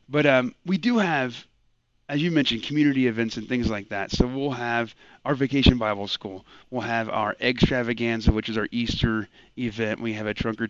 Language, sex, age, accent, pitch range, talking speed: English, male, 30-49, American, 115-160 Hz, 195 wpm